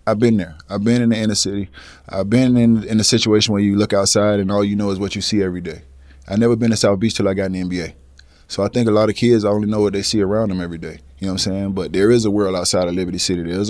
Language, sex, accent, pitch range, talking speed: English, male, American, 95-115 Hz, 320 wpm